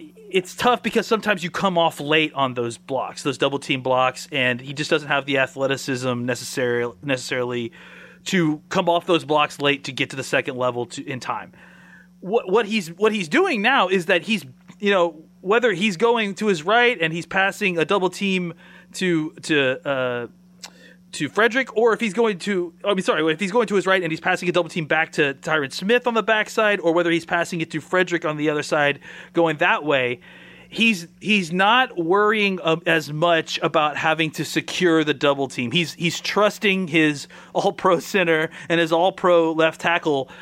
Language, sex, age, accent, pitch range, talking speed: English, male, 30-49, American, 145-185 Hz, 195 wpm